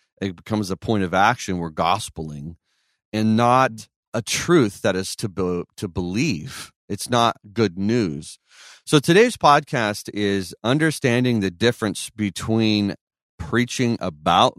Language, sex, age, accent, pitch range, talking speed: English, male, 40-59, American, 95-125 Hz, 130 wpm